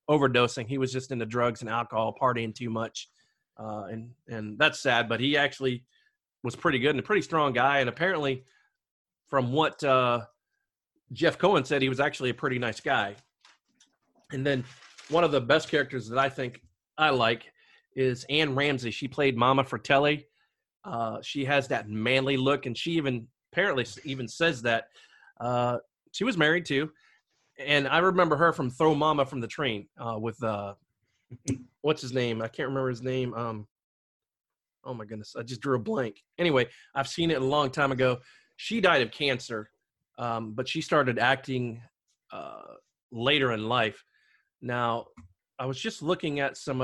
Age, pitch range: 30-49, 115-140 Hz